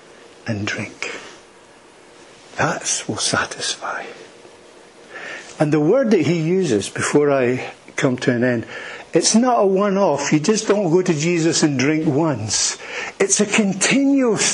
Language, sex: English, male